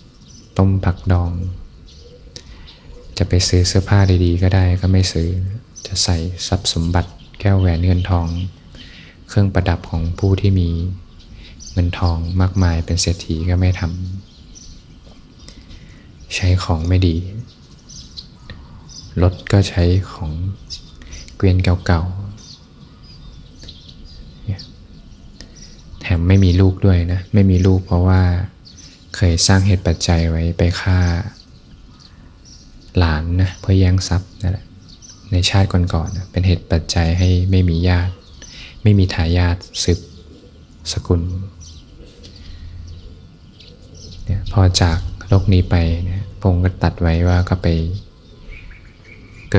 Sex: male